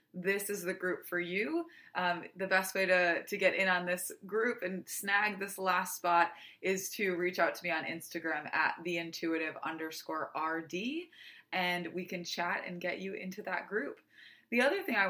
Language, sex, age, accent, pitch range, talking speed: English, female, 20-39, American, 175-215 Hz, 185 wpm